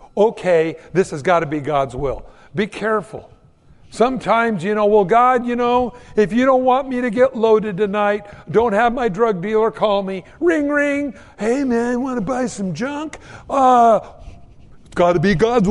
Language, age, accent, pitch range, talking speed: English, 60-79, American, 165-240 Hz, 185 wpm